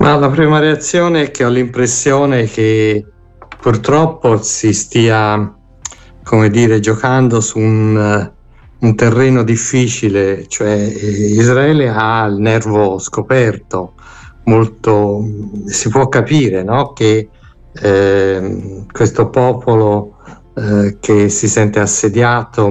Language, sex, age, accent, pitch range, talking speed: Italian, male, 60-79, native, 100-125 Hz, 105 wpm